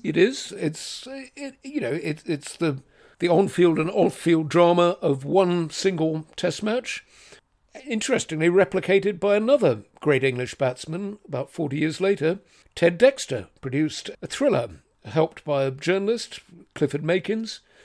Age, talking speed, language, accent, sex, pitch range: 60-79, 140 wpm, English, British, male, 155-205 Hz